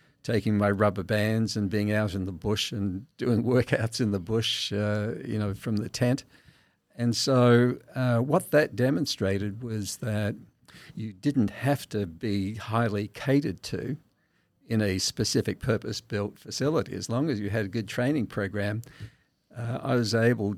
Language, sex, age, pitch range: English, male, 50-69, 105-125 Hz